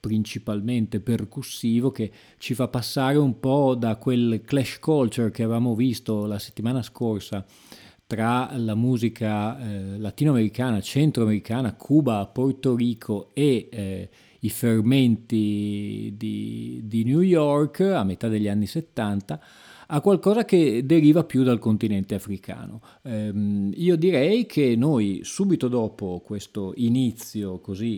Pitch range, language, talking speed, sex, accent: 105-135 Hz, Italian, 125 wpm, male, native